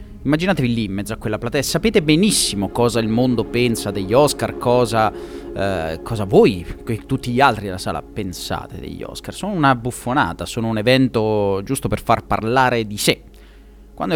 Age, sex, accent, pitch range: 30-49, male, native, 100-140 Hz